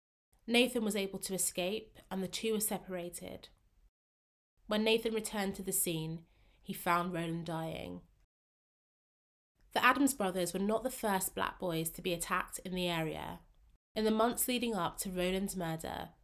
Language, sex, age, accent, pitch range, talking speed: English, female, 20-39, British, 165-210 Hz, 160 wpm